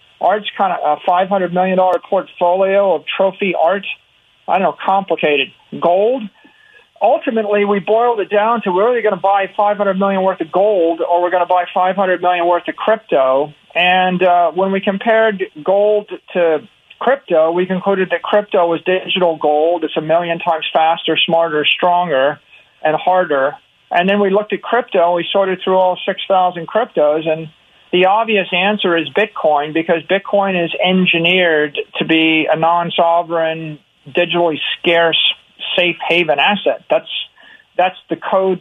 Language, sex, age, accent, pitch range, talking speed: English, male, 50-69, American, 165-195 Hz, 155 wpm